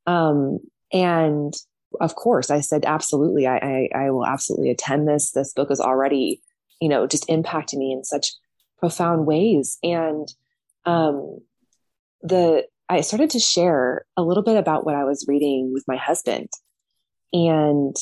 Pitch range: 140-170 Hz